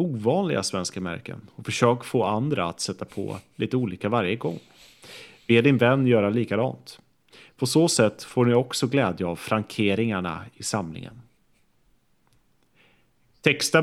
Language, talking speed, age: English, 135 wpm, 30-49